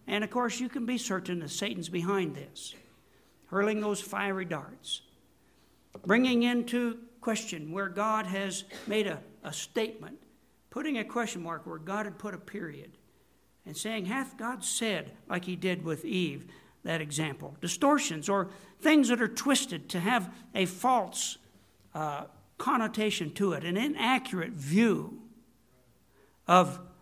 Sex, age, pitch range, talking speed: male, 60-79, 180-235 Hz, 145 wpm